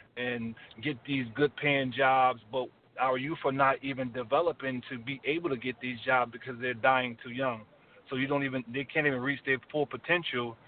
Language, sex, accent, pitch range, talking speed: English, male, American, 125-145 Hz, 200 wpm